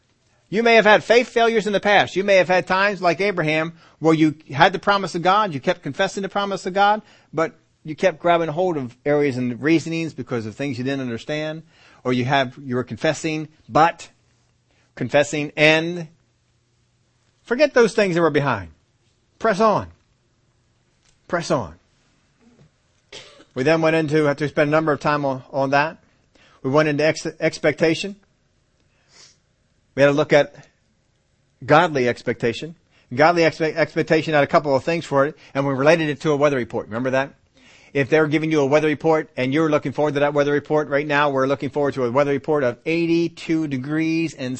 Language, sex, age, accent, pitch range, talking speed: English, male, 40-59, American, 130-165 Hz, 185 wpm